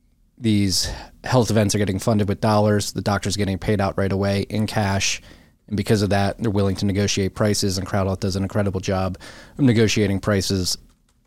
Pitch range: 95-110 Hz